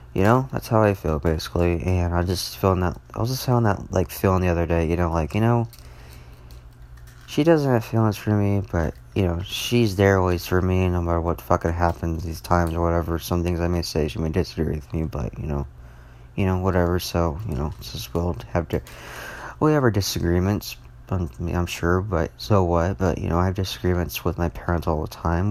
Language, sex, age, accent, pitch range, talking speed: English, male, 20-39, American, 75-100 Hz, 225 wpm